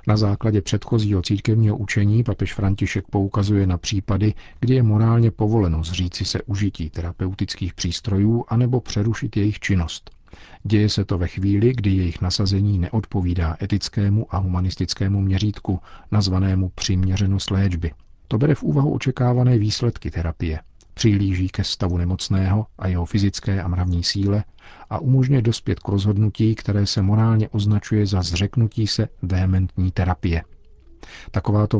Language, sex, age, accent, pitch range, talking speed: Czech, male, 50-69, native, 90-105 Hz, 135 wpm